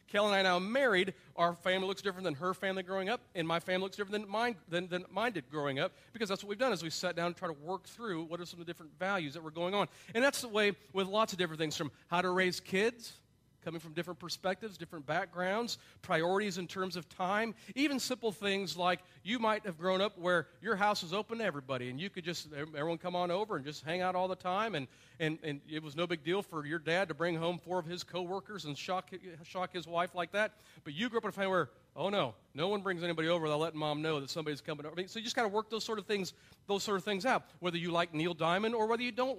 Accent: American